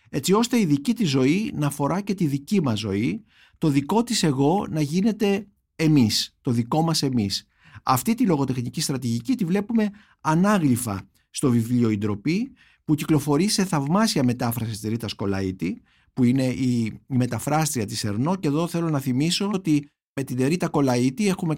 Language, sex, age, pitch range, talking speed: Greek, male, 50-69, 125-185 Hz, 165 wpm